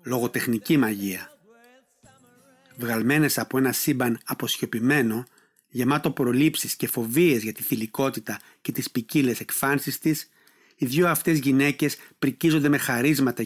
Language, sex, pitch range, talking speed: Greek, male, 125-155 Hz, 115 wpm